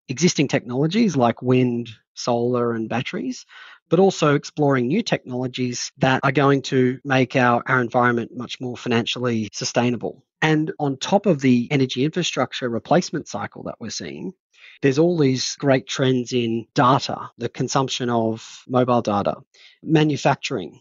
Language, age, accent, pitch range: English, 30-49, Australian, 120-140 Hz